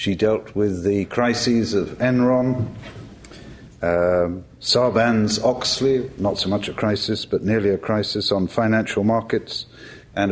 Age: 50-69